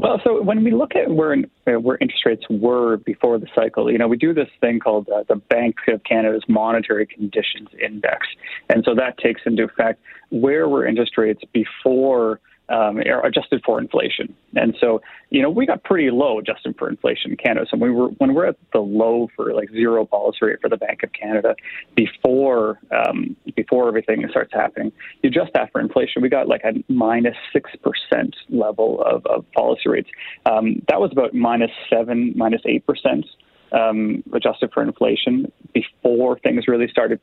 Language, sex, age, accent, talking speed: English, male, 30-49, American, 185 wpm